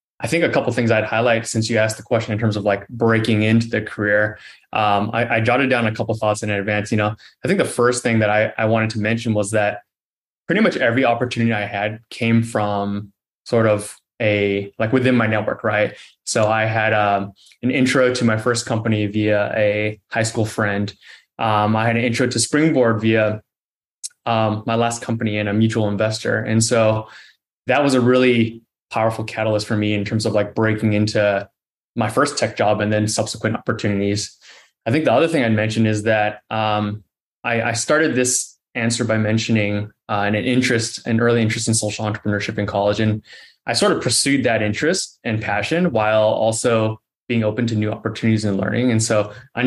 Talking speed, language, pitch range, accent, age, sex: 200 wpm, English, 105-115 Hz, American, 20-39, male